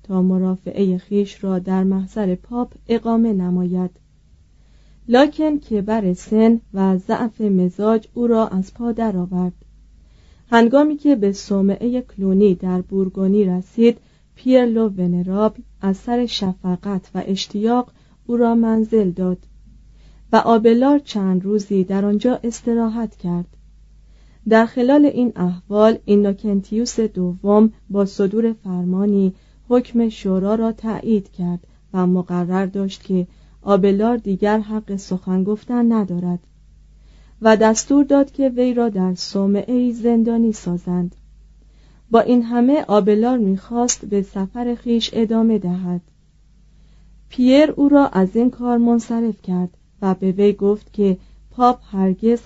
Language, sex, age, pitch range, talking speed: Persian, female, 30-49, 185-230 Hz, 125 wpm